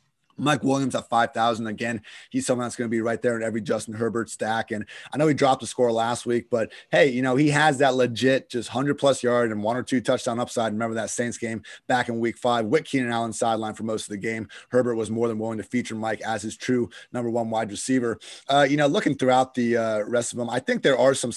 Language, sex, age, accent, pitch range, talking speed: English, male, 30-49, American, 115-135 Hz, 260 wpm